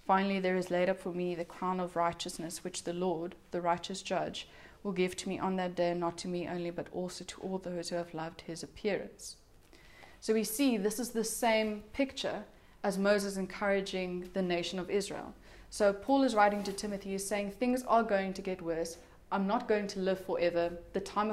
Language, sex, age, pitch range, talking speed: English, female, 20-39, 180-205 Hz, 210 wpm